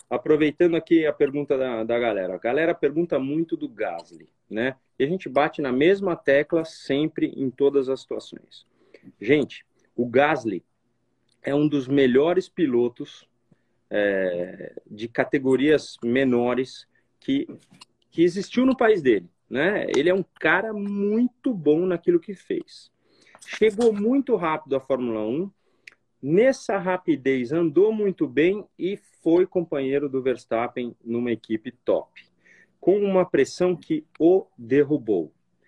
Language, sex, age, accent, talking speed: Portuguese, male, 40-59, Brazilian, 130 wpm